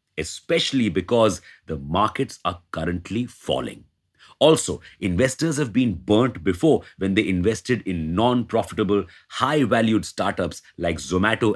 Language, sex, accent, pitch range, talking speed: English, male, Indian, 90-125 Hz, 115 wpm